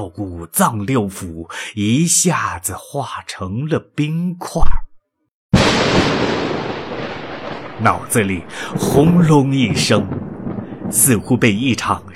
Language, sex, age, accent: Chinese, male, 30-49, native